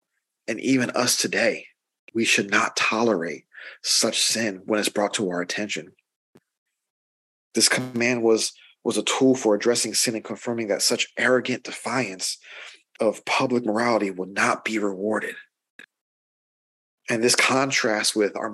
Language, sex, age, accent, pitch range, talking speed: English, male, 40-59, American, 115-135 Hz, 140 wpm